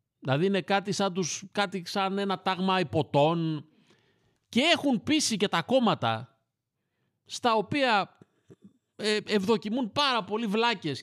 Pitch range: 135-205 Hz